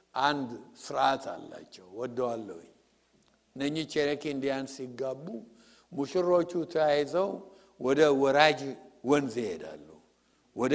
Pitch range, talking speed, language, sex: 120-170 Hz, 105 wpm, English, male